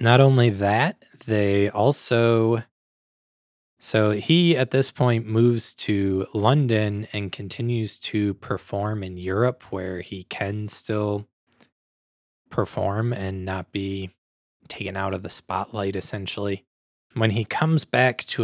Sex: male